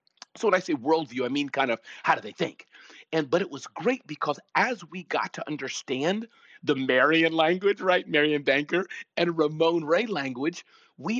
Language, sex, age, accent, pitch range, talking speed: English, male, 40-59, American, 140-205 Hz, 190 wpm